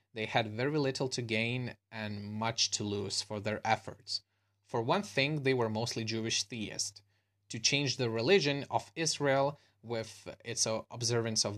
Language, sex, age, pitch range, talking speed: English, male, 20-39, 105-125 Hz, 160 wpm